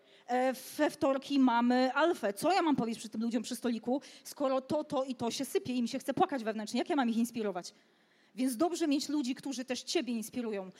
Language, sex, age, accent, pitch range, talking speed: Polish, female, 30-49, native, 245-285 Hz, 215 wpm